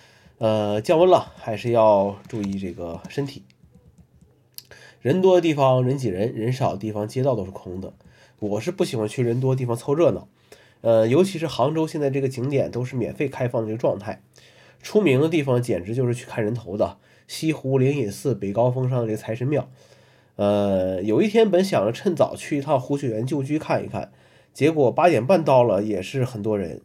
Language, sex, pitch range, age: Chinese, male, 110-135 Hz, 20-39